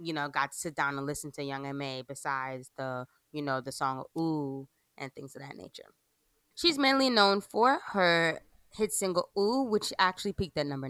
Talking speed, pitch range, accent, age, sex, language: 200 wpm, 150-190 Hz, American, 20-39, female, English